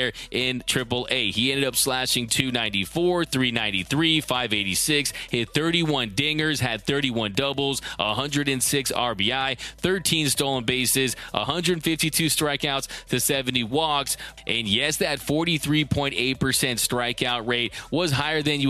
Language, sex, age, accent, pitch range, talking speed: English, male, 20-39, American, 125-145 Hz, 120 wpm